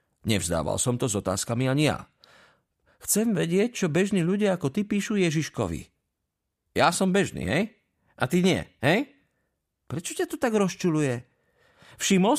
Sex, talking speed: male, 145 wpm